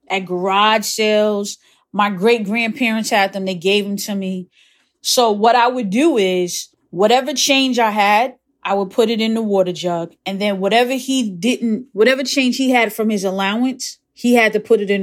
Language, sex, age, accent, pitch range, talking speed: English, female, 20-39, American, 190-235 Hz, 195 wpm